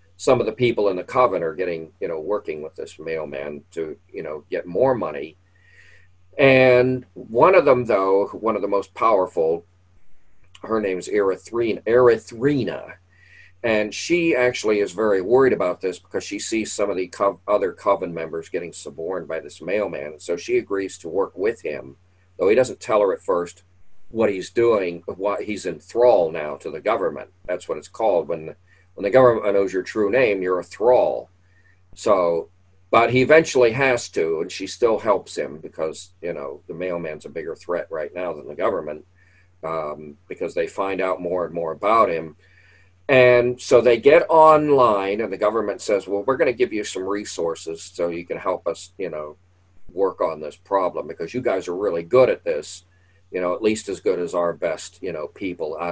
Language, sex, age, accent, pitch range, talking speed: English, male, 50-69, American, 90-150 Hz, 190 wpm